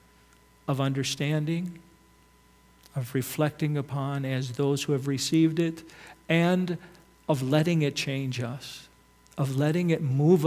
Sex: male